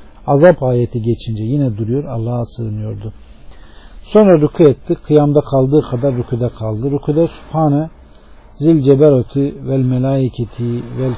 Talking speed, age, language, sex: 120 wpm, 50-69, Turkish, male